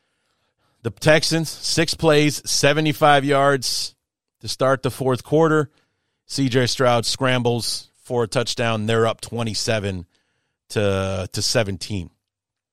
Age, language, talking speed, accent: 40-59, English, 110 wpm, American